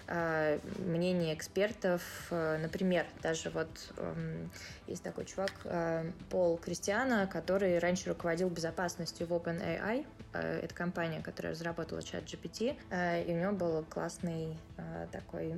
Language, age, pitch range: Russian, 20-39, 165-195 Hz